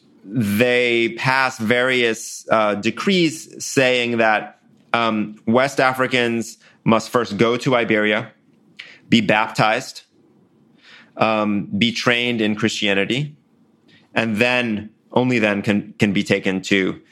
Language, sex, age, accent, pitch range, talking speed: English, male, 30-49, American, 110-130 Hz, 110 wpm